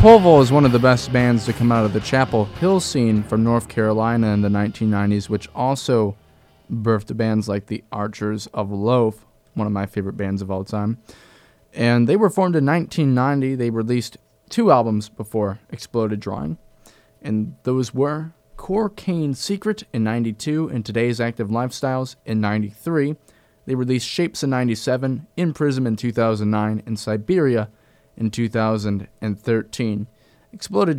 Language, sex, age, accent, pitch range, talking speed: English, male, 20-39, American, 110-130 Hz, 155 wpm